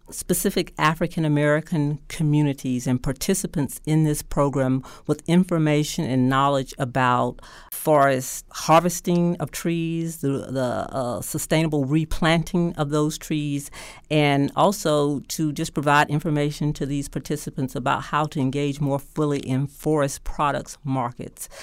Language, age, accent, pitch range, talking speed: English, 50-69, American, 140-160 Hz, 120 wpm